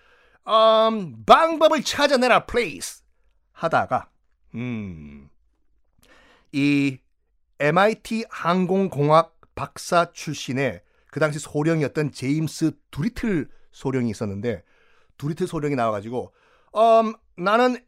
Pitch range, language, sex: 150-215 Hz, Korean, male